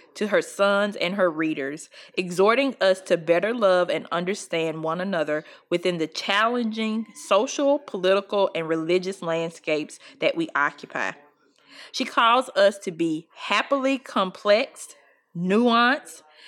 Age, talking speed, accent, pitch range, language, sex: 20-39, 125 wpm, American, 175-220 Hz, English, female